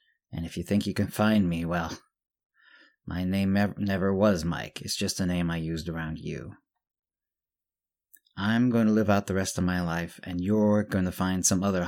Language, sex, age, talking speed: English, male, 30-49, 195 wpm